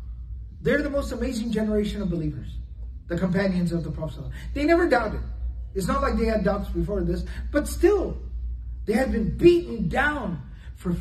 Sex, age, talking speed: male, 40-59, 170 wpm